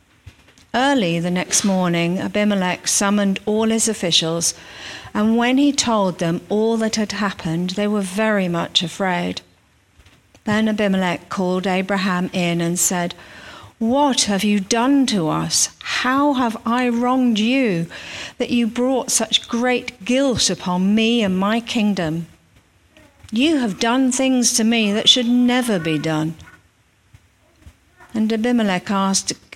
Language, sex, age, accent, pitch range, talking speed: English, female, 50-69, British, 170-230 Hz, 135 wpm